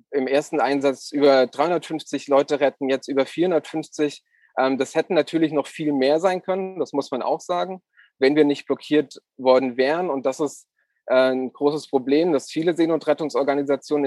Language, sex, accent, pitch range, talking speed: German, male, German, 135-150 Hz, 160 wpm